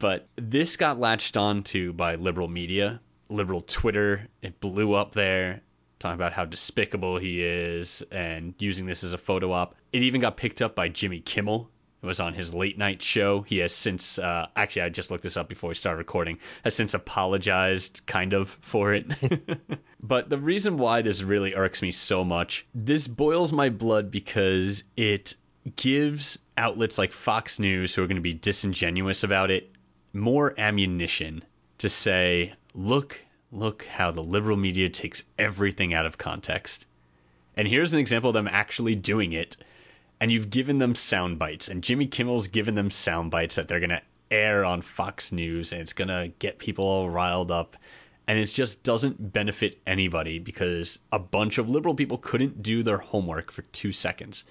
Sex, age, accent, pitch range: male, 30-49, American, 90-110 Hz